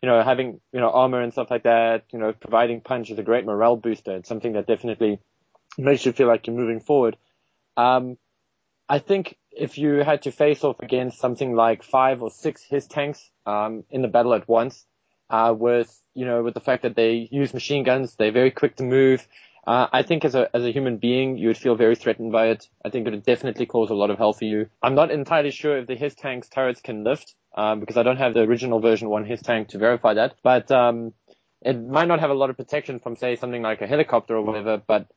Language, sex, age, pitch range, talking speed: English, male, 20-39, 115-130 Hz, 240 wpm